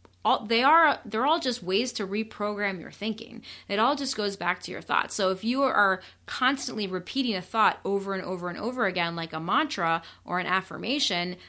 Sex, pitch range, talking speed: female, 180-225 Hz, 205 wpm